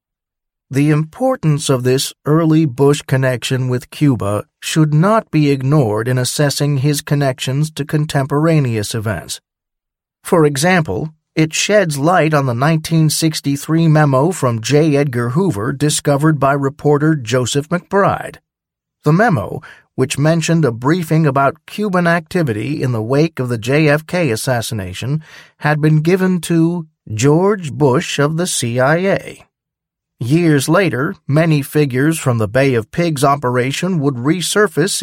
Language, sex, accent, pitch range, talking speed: English, male, American, 135-165 Hz, 130 wpm